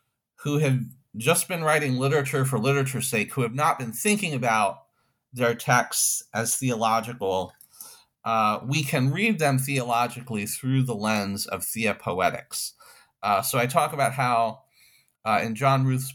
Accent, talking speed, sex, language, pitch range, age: American, 150 wpm, male, English, 110-135 Hz, 30-49